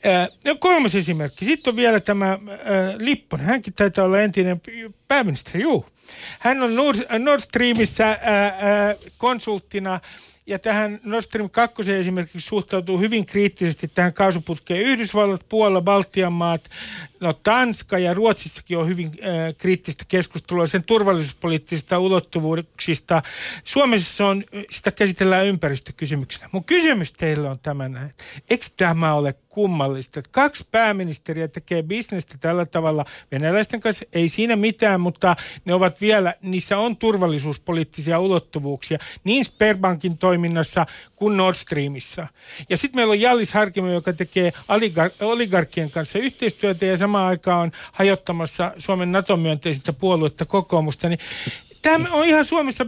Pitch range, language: 170-215 Hz, Finnish